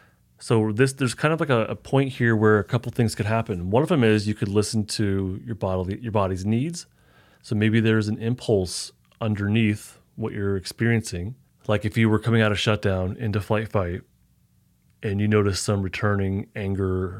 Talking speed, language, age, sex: 190 wpm, English, 30-49, male